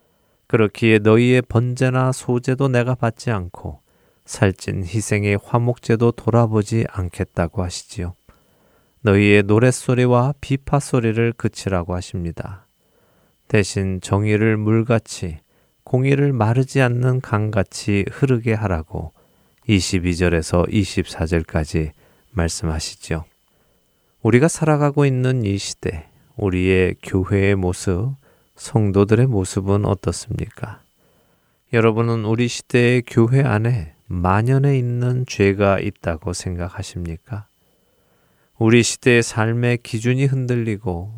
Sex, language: male, Korean